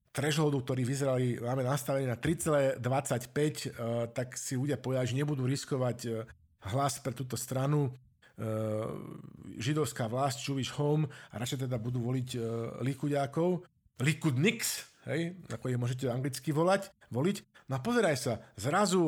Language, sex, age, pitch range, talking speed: Slovak, male, 50-69, 120-150 Hz, 125 wpm